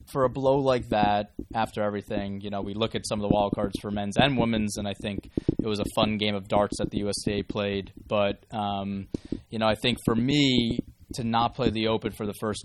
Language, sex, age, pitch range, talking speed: English, male, 20-39, 105-120 Hz, 240 wpm